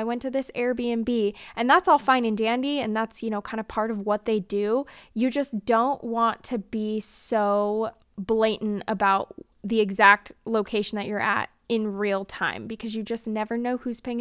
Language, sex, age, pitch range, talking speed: English, female, 10-29, 215-250 Hz, 200 wpm